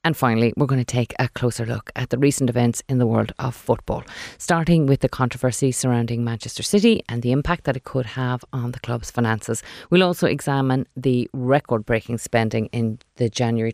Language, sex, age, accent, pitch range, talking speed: English, female, 30-49, Irish, 120-150 Hz, 195 wpm